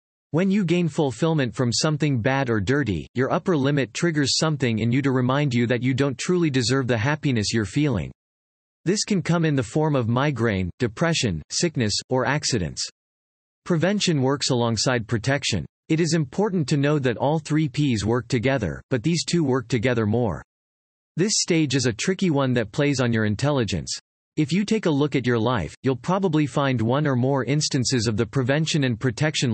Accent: American